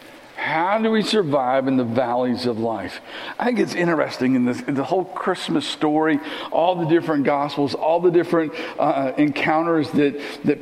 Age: 50-69